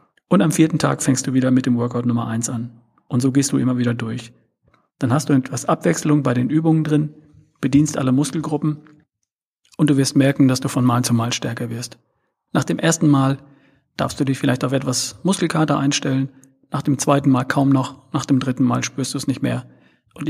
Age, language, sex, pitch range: 40-59, German, male, 125-145 Hz